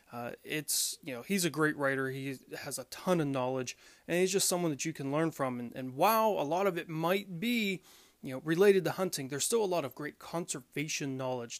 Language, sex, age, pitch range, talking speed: English, male, 30-49, 135-170 Hz, 235 wpm